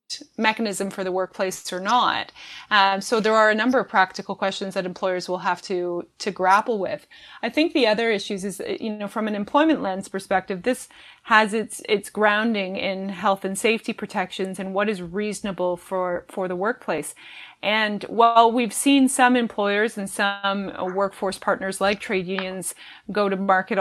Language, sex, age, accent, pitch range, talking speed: English, female, 20-39, American, 190-230 Hz, 175 wpm